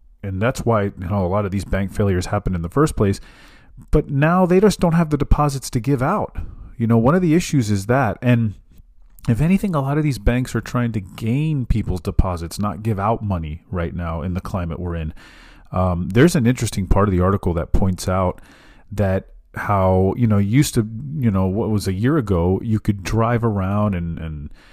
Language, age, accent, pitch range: English, 40-59, American, 90-120 Hz